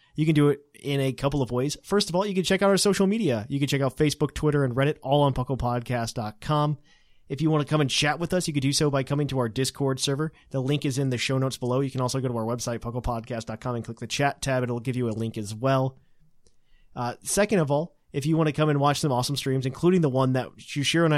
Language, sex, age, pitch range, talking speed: English, male, 30-49, 125-145 Hz, 275 wpm